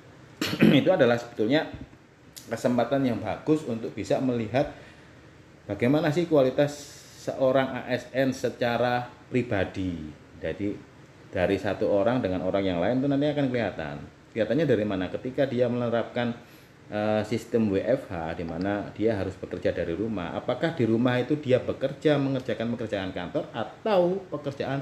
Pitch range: 105-145 Hz